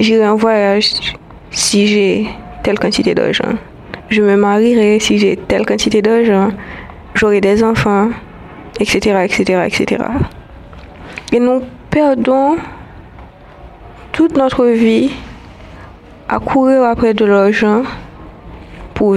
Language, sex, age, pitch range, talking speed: French, female, 20-39, 210-230 Hz, 105 wpm